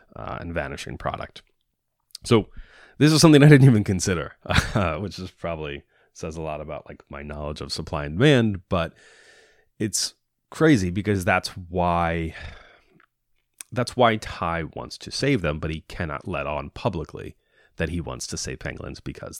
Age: 30-49